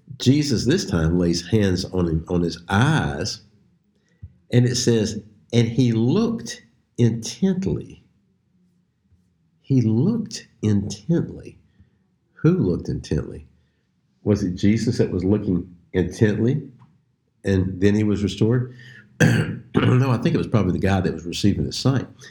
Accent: American